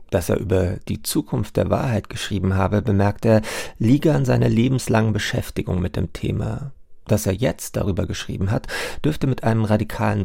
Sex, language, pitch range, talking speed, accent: male, German, 100-120 Hz, 170 wpm, German